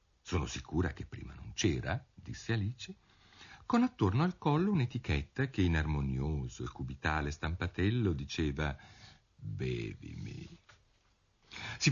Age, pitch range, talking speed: 50-69, 85-115 Hz, 110 wpm